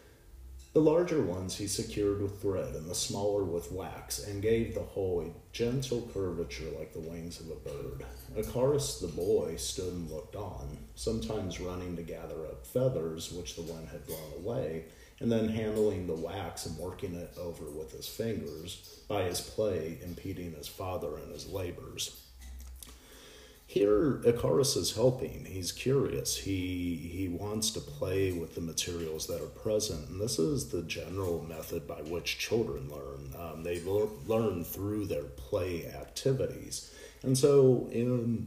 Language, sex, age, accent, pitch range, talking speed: English, male, 40-59, American, 85-110 Hz, 160 wpm